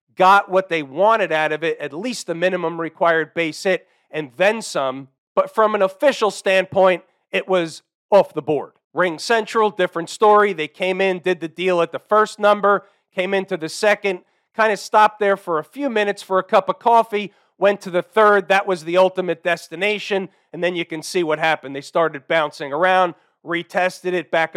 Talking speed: 200 wpm